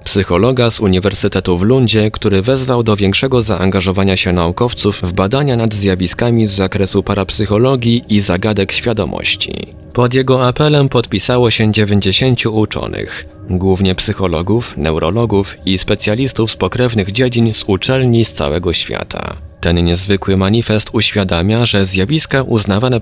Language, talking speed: Polish, 130 wpm